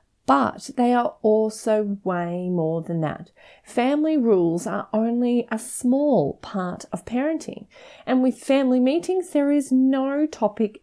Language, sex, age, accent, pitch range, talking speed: English, female, 30-49, Australian, 200-265 Hz, 140 wpm